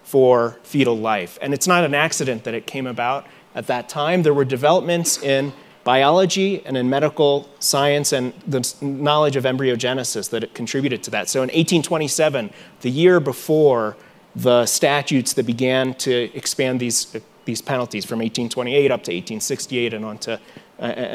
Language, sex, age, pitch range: English, male, 30-49, 120-150 Hz